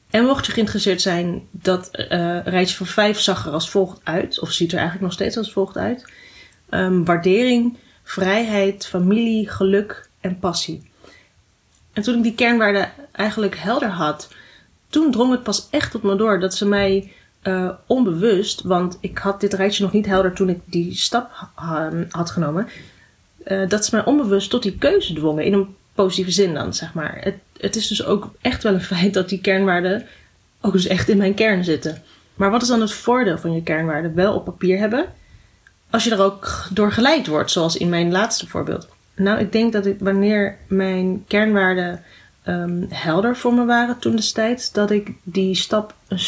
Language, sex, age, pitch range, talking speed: Dutch, female, 30-49, 180-210 Hz, 190 wpm